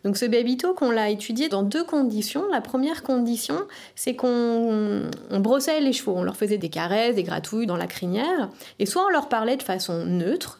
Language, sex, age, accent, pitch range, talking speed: French, female, 30-49, French, 195-260 Hz, 205 wpm